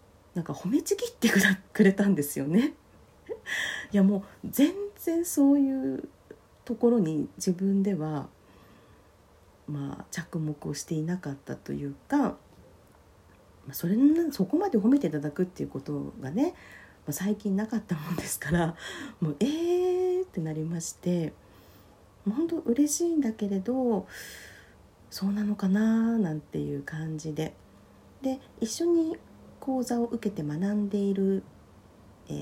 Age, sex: 40-59, female